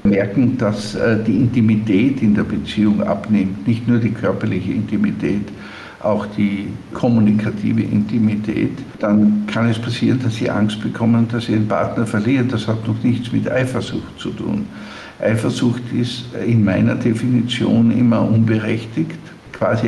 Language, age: German, 60-79